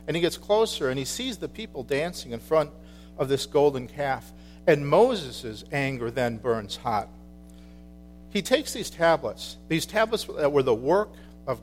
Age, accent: 50-69, American